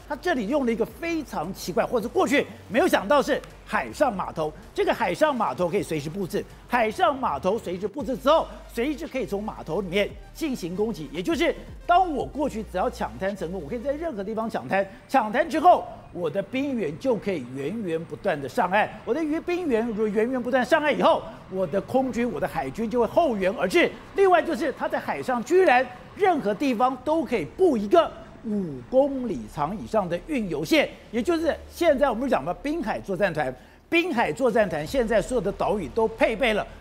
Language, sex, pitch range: Chinese, male, 195-290 Hz